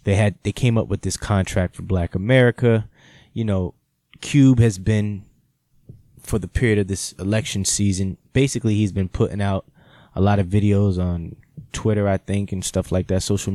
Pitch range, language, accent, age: 95-110 Hz, English, American, 20-39